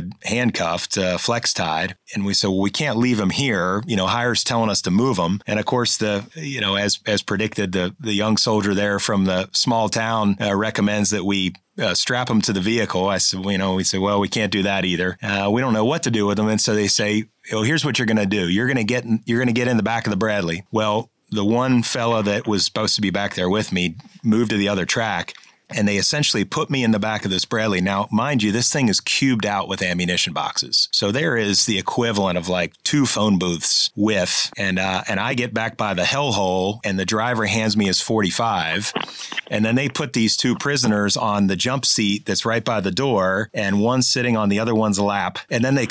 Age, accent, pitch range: 30-49, American, 100-115 Hz